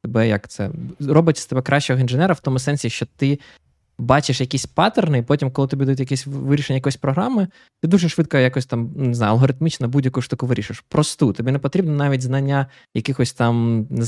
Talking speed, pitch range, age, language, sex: 190 wpm, 125-150 Hz, 20-39, Ukrainian, male